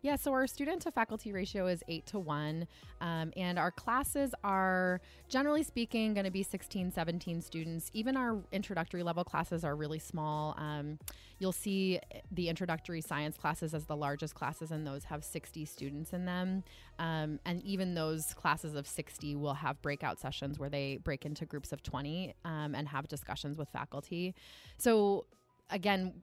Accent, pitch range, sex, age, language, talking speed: American, 150-185 Hz, female, 20-39, English, 170 wpm